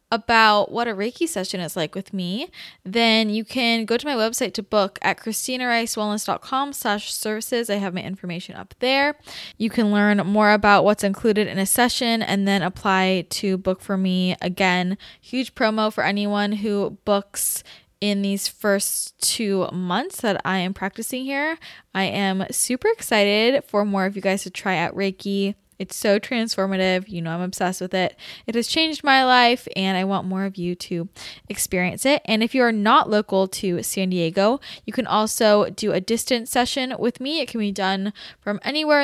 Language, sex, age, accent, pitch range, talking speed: English, female, 10-29, American, 190-230 Hz, 190 wpm